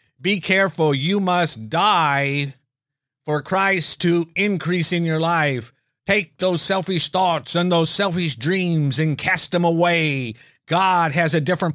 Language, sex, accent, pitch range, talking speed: English, male, American, 140-180 Hz, 145 wpm